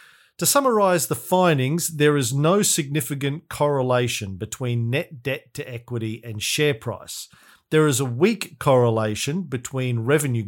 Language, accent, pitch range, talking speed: English, Australian, 120-155 Hz, 135 wpm